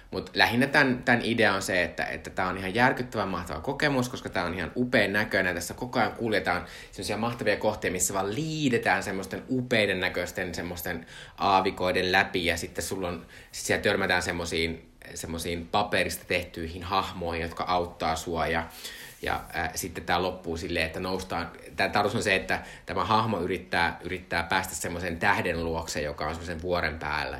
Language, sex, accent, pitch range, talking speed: Finnish, male, native, 90-115 Hz, 165 wpm